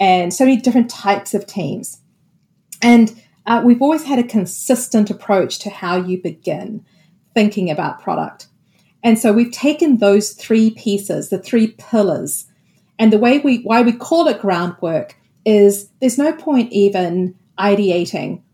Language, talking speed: English, 150 wpm